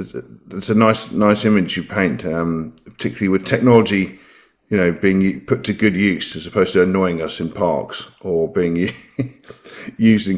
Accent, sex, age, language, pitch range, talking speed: British, male, 50-69, English, 100-125 Hz, 180 wpm